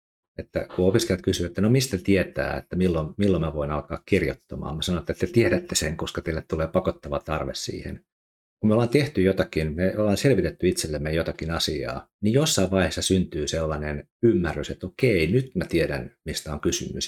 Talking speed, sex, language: 185 wpm, male, Finnish